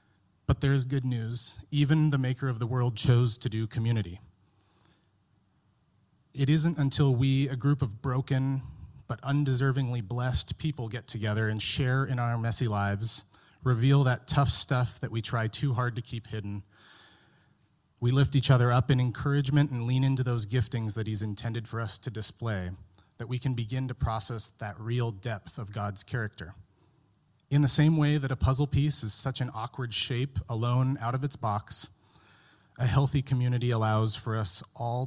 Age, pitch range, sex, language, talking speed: 30-49, 110-135 Hz, male, English, 175 wpm